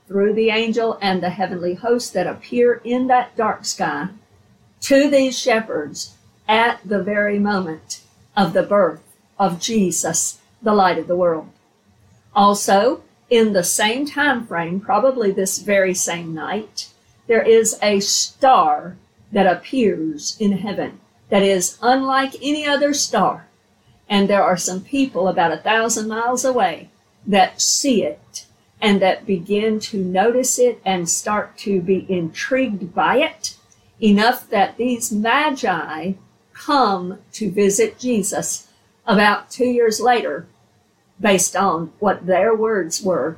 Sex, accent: female, American